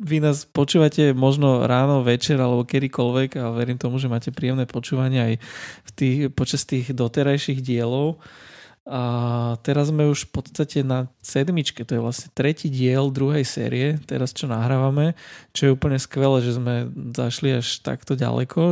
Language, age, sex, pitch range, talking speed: Slovak, 20-39, male, 125-145 Hz, 160 wpm